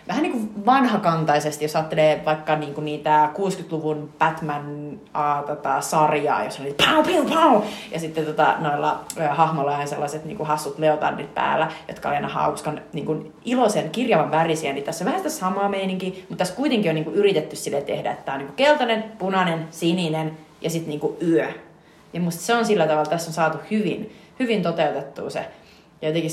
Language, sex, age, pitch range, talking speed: Finnish, female, 30-49, 155-195 Hz, 175 wpm